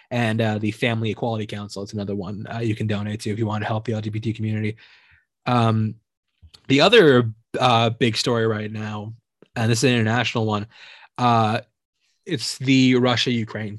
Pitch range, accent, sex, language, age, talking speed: 110-130 Hz, American, male, English, 20-39, 175 wpm